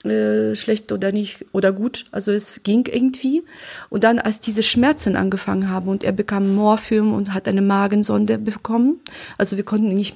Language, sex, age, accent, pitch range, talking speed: German, female, 30-49, German, 195-225 Hz, 185 wpm